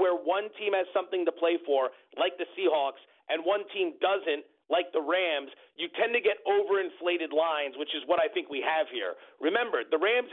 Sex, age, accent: male, 40-59, American